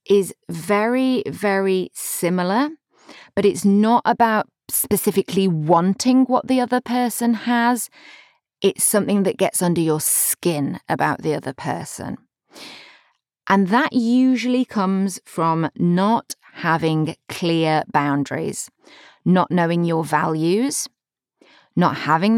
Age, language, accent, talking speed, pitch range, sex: 30-49, English, British, 110 wpm, 155-205 Hz, female